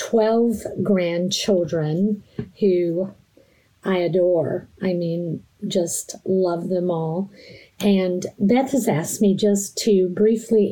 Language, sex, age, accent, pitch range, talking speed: English, female, 50-69, American, 175-210 Hz, 105 wpm